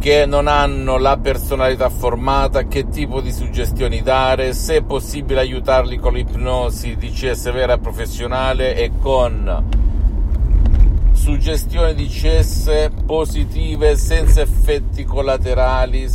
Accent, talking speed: native, 115 wpm